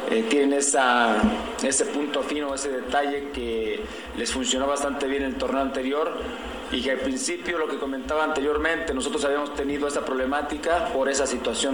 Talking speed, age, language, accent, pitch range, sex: 155 wpm, 50-69, Spanish, Mexican, 135-155 Hz, male